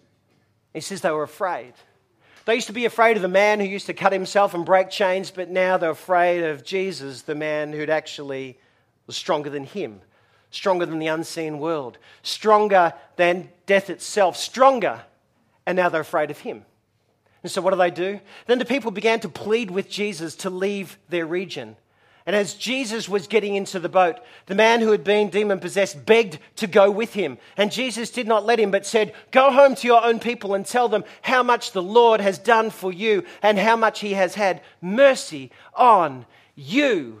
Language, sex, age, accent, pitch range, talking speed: English, male, 40-59, Australian, 175-225 Hz, 200 wpm